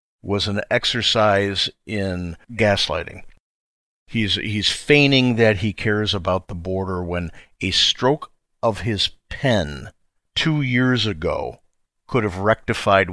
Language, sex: English, male